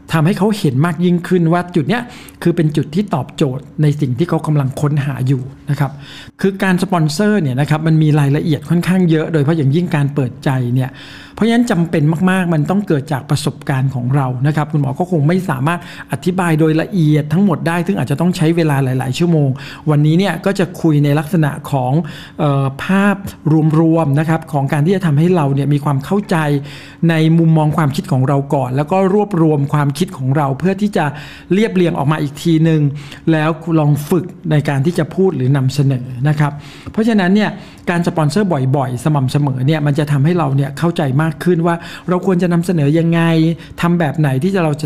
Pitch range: 145-175 Hz